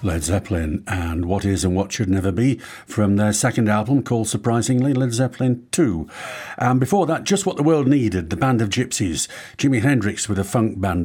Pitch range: 95-120 Hz